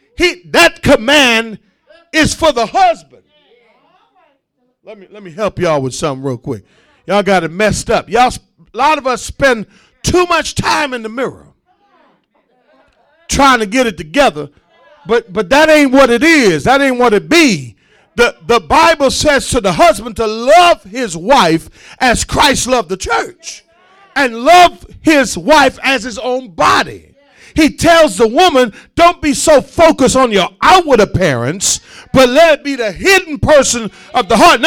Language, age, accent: English, 50-69, American